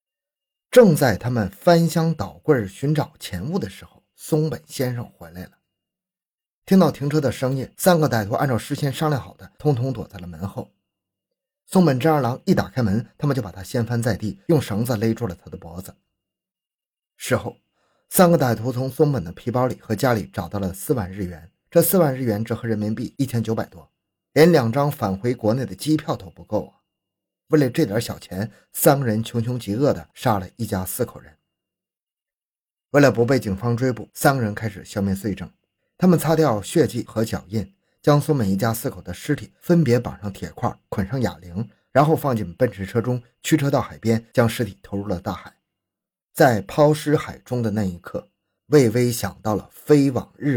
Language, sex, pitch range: Chinese, male, 100-145 Hz